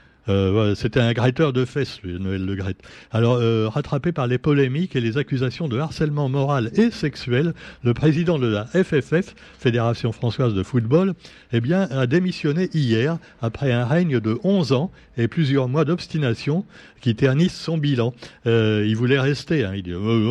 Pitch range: 110-155 Hz